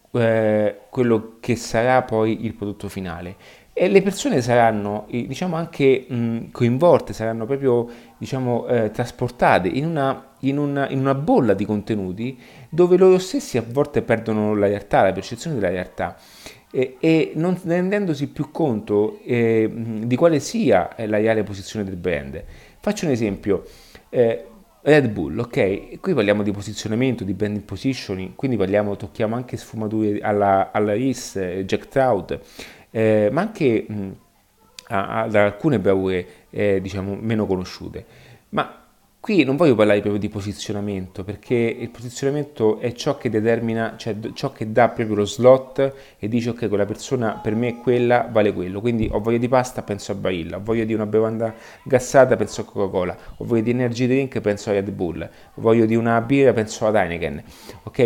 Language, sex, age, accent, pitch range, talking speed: Italian, male, 30-49, native, 105-130 Hz, 165 wpm